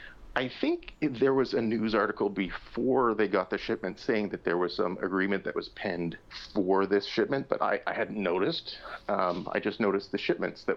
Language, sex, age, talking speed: English, male, 40-59, 200 wpm